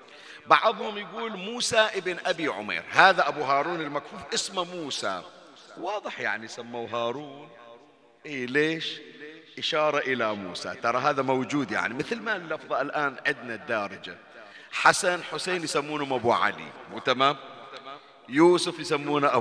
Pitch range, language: 140-195 Hz, Arabic